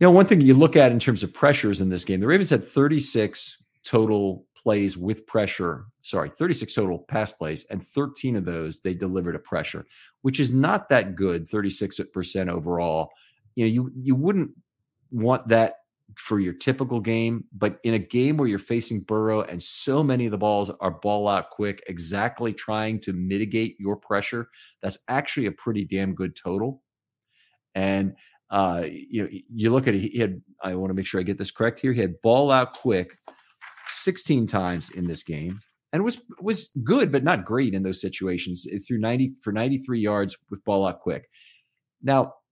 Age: 40-59